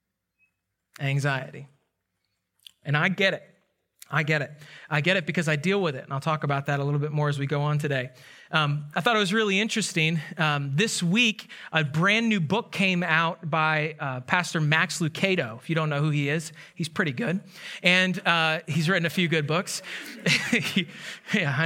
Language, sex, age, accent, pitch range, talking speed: English, male, 30-49, American, 150-185 Hz, 195 wpm